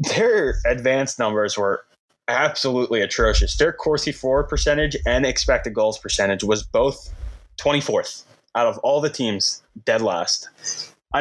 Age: 20-39